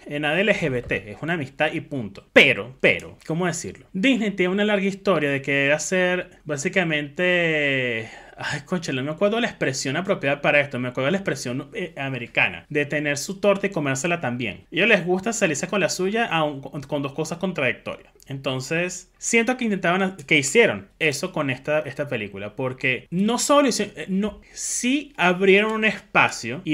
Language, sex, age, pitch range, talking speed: Spanish, male, 30-49, 145-190 Hz, 175 wpm